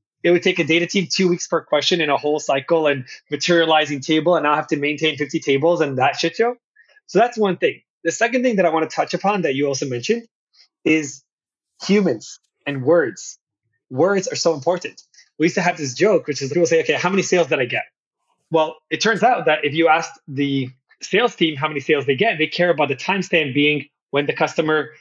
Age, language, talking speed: 20-39, English, 230 wpm